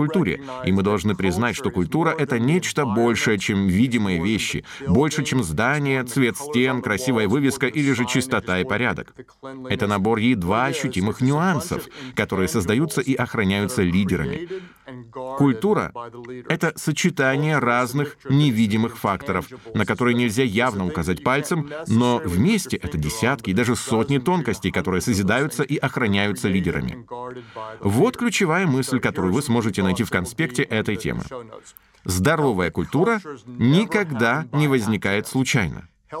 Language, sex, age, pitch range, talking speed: Russian, male, 30-49, 105-140 Hz, 125 wpm